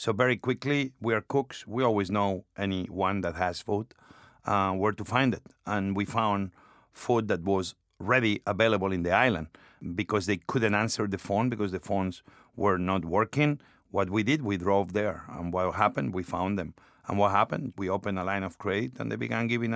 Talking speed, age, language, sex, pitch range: 200 wpm, 50-69, English, male, 100-125 Hz